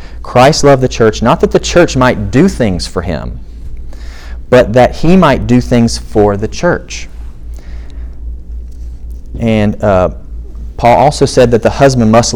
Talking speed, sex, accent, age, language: 150 wpm, male, American, 40-59, English